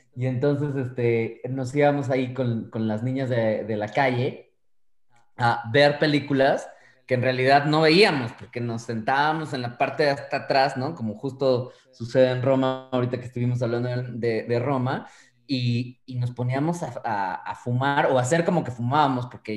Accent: Mexican